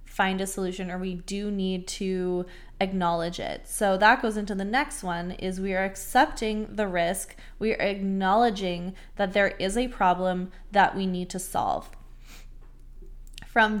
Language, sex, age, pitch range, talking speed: English, female, 20-39, 190-225 Hz, 160 wpm